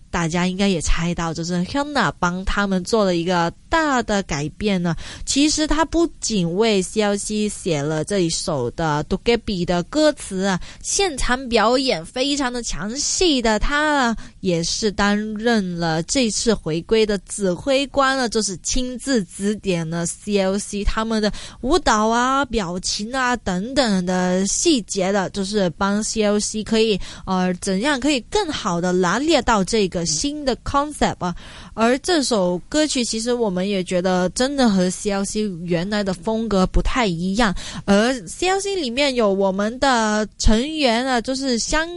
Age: 20-39